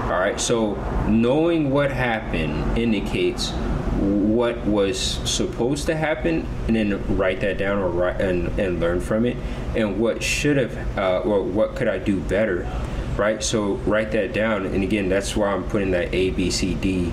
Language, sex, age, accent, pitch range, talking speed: English, male, 20-39, American, 90-115 Hz, 180 wpm